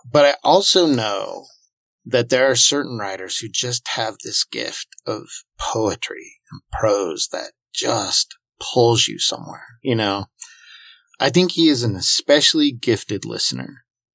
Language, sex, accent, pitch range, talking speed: English, male, American, 110-140 Hz, 140 wpm